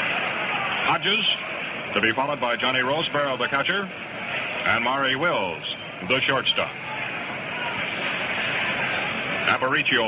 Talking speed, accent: 90 wpm, American